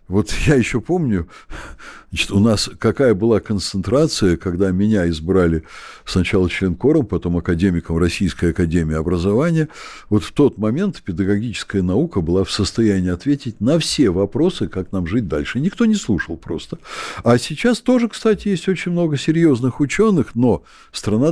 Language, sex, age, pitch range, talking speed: Russian, male, 60-79, 95-160 Hz, 145 wpm